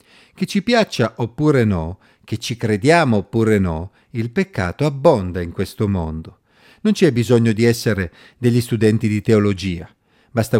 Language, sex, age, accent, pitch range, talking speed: Italian, male, 50-69, native, 105-160 Hz, 145 wpm